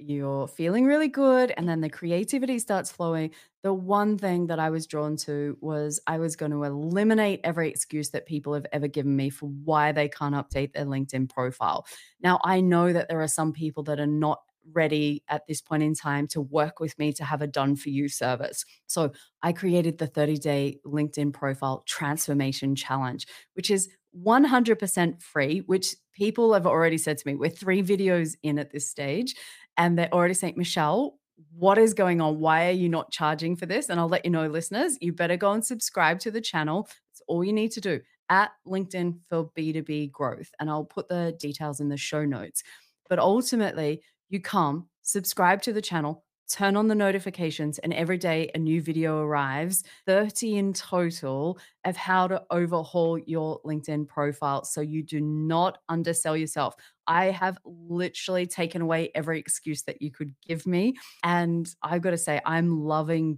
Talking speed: 190 wpm